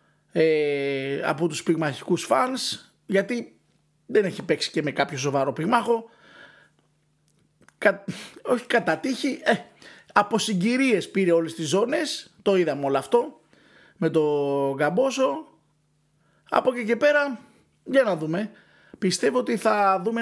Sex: male